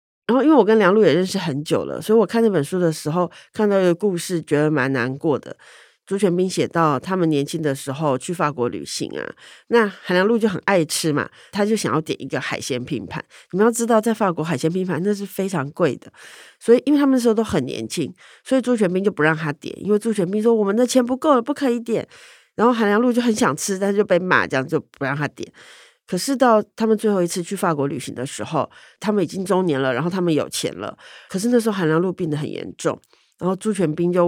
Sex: female